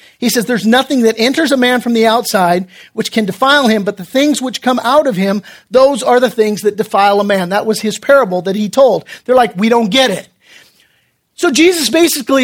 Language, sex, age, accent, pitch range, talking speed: English, male, 40-59, American, 220-280 Hz, 225 wpm